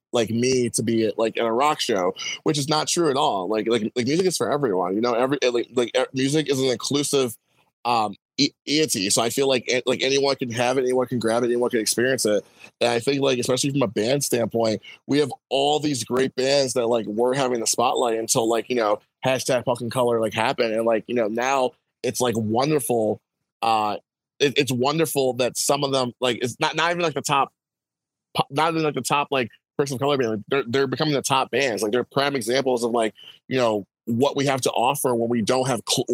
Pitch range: 115-135 Hz